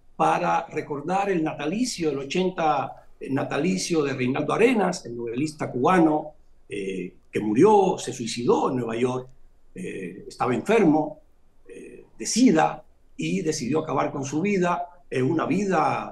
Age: 60-79